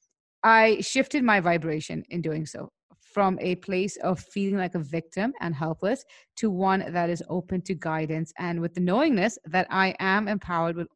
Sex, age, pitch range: female, 30-49, 170-205 Hz